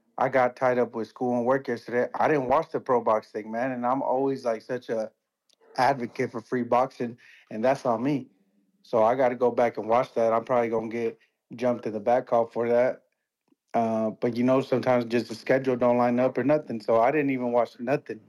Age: 30-49